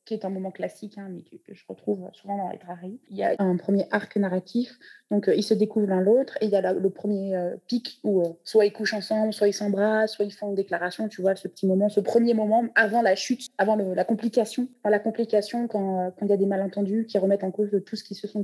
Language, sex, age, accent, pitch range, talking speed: French, female, 20-39, French, 190-220 Hz, 280 wpm